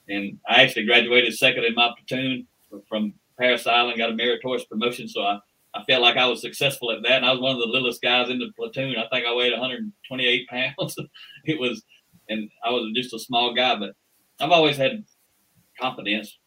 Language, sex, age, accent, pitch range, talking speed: English, male, 40-59, American, 110-125 Hz, 205 wpm